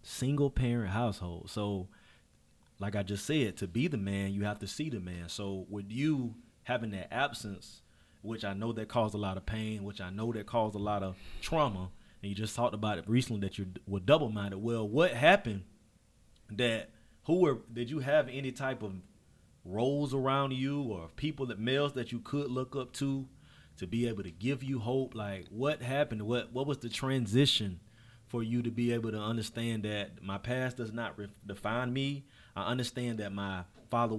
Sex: male